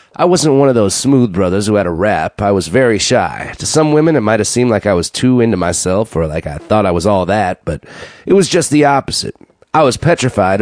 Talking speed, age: 255 wpm, 30-49